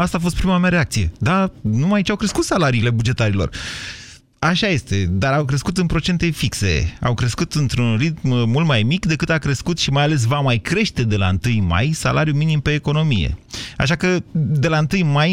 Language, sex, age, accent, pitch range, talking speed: Romanian, male, 30-49, native, 110-155 Hz, 200 wpm